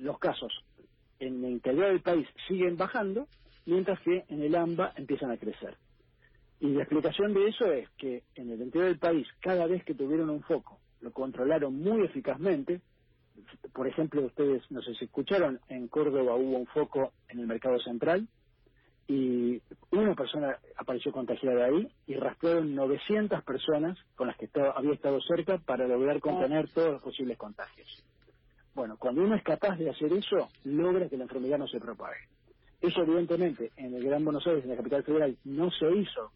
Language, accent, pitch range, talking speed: Spanish, Argentinian, 130-180 Hz, 175 wpm